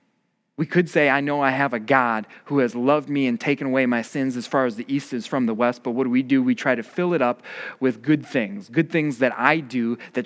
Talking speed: 275 wpm